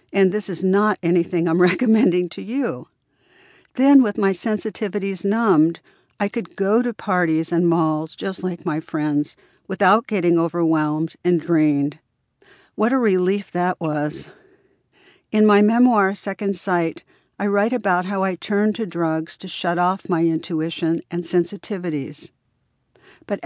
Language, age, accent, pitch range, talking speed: English, 60-79, American, 165-205 Hz, 145 wpm